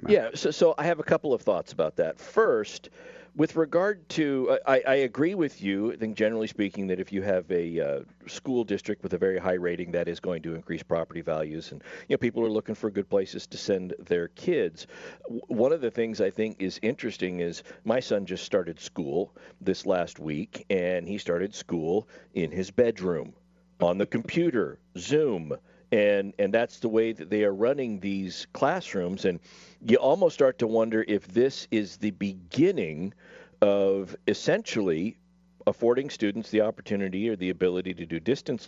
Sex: male